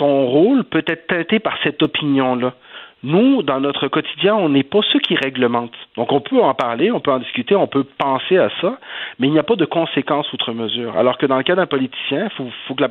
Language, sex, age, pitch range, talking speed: French, male, 40-59, 125-165 Hz, 245 wpm